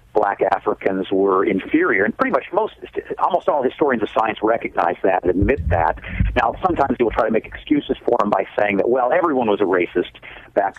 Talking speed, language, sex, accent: 200 wpm, English, male, American